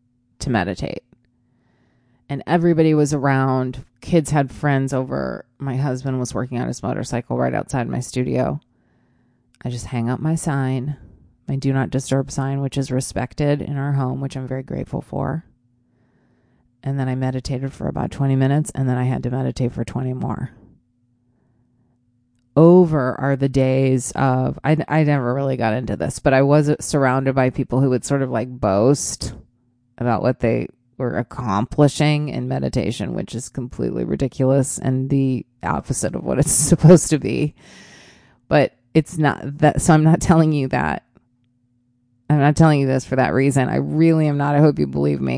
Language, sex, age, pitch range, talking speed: English, female, 30-49, 125-140 Hz, 175 wpm